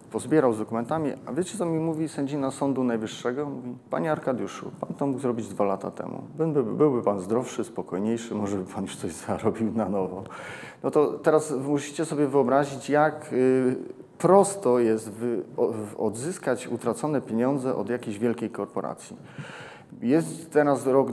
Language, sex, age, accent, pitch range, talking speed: Polish, male, 40-59, native, 115-145 Hz, 150 wpm